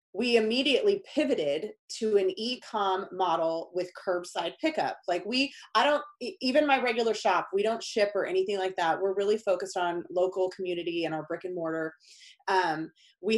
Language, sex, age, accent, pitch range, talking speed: English, female, 30-49, American, 185-245 Hz, 170 wpm